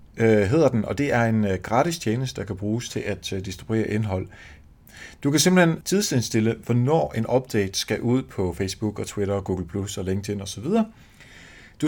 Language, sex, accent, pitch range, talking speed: Danish, male, native, 95-130 Hz, 170 wpm